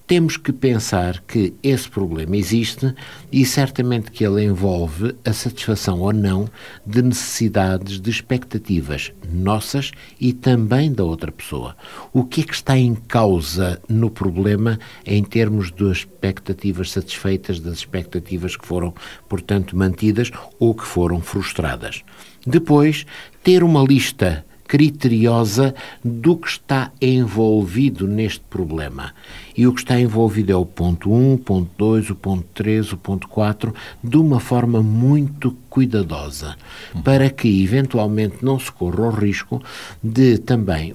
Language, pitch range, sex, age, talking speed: Portuguese, 95-125 Hz, male, 60-79, 140 wpm